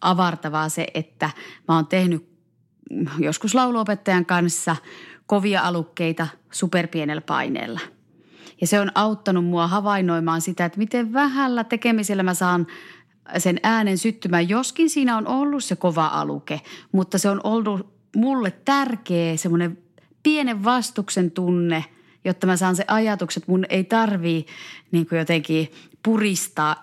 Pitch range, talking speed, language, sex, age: 160-205 Hz, 130 wpm, Finnish, female, 30-49